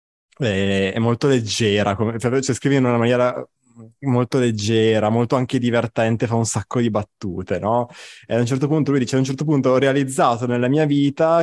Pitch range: 110-135 Hz